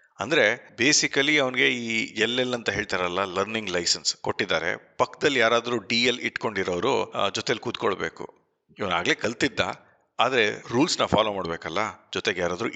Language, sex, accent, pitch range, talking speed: Kannada, male, native, 100-130 Hz, 120 wpm